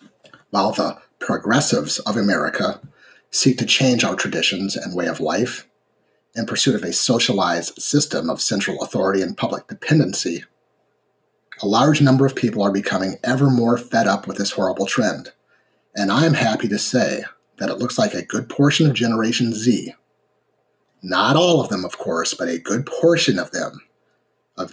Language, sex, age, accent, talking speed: English, male, 30-49, American, 170 wpm